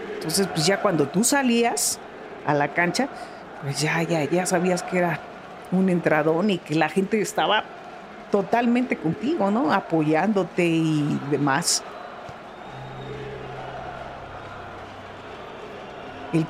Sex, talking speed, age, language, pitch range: female, 110 wpm, 50-69, Spanish, 165-230 Hz